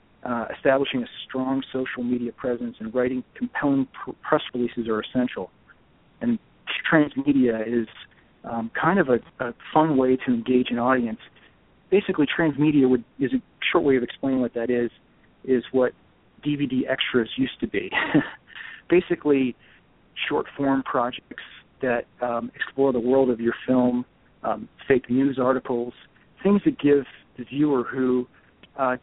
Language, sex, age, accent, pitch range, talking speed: English, male, 50-69, American, 120-140 Hz, 140 wpm